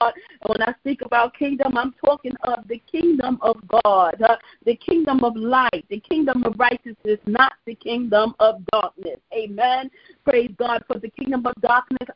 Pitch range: 230-275 Hz